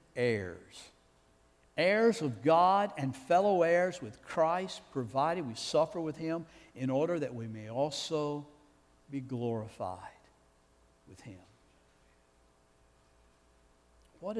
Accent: American